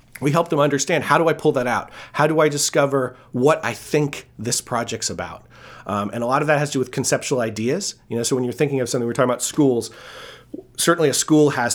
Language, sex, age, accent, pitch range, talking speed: English, male, 30-49, American, 120-150 Hz, 245 wpm